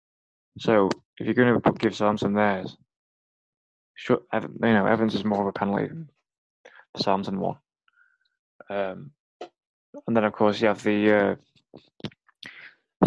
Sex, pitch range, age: male, 100-115 Hz, 20-39